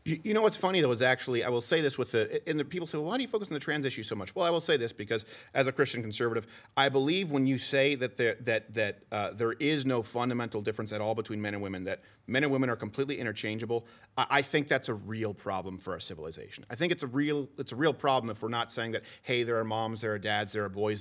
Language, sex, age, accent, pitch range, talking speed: English, male, 30-49, American, 110-140 Hz, 285 wpm